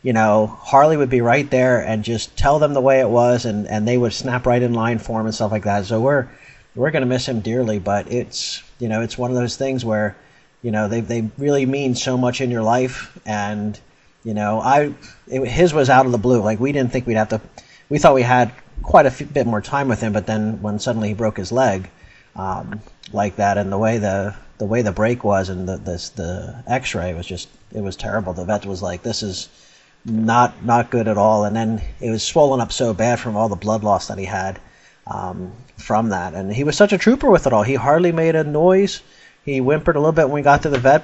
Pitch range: 105-130 Hz